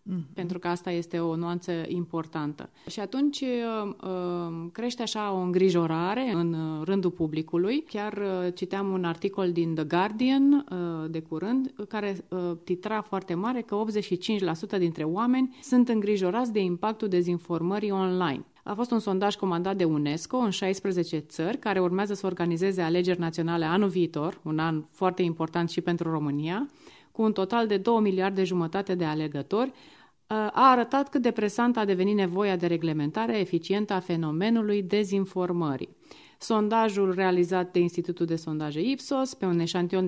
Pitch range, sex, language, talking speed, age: 170-215 Hz, female, Romanian, 145 wpm, 30-49